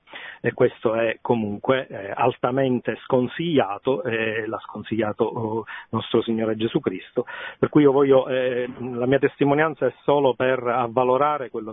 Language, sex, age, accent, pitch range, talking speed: Italian, male, 40-59, native, 125-160 Hz, 130 wpm